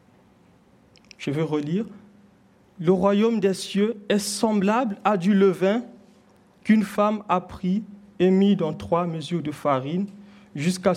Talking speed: 130 wpm